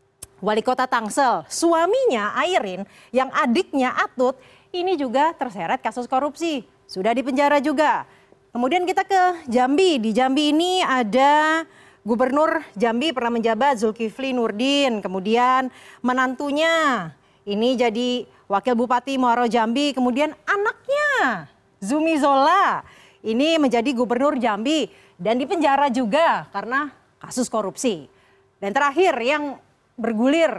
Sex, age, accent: female, 30-49, native